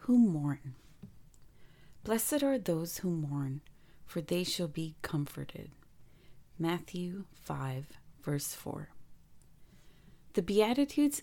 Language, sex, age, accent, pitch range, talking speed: English, female, 30-49, American, 145-180 Hz, 95 wpm